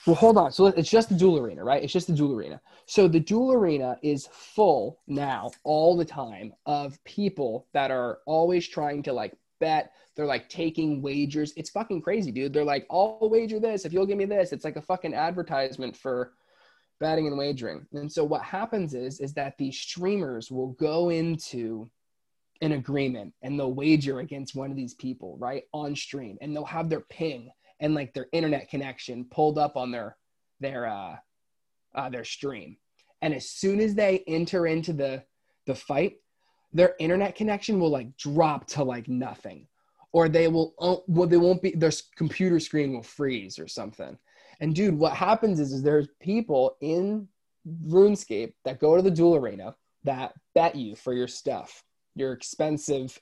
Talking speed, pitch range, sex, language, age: 185 wpm, 140-180 Hz, male, English, 20-39